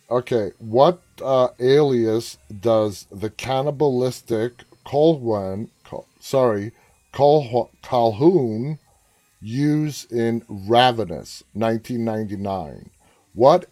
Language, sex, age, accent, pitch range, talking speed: English, male, 30-49, American, 100-130 Hz, 65 wpm